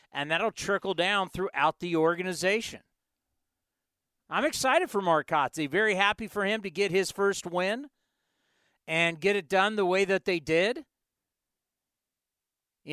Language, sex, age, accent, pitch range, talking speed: English, male, 40-59, American, 170-215 Hz, 140 wpm